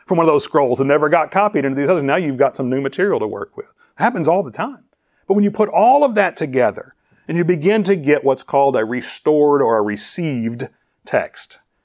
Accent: American